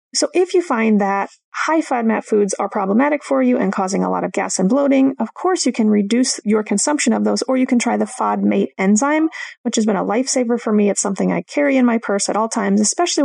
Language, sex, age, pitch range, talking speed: English, female, 30-49, 205-255 Hz, 245 wpm